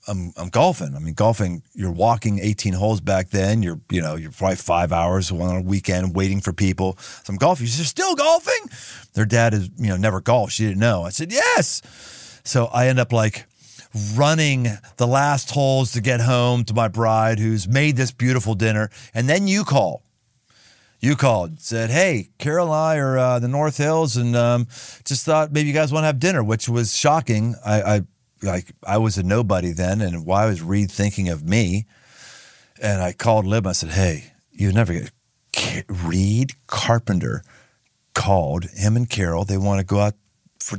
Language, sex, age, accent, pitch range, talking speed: English, male, 40-59, American, 95-130 Hz, 190 wpm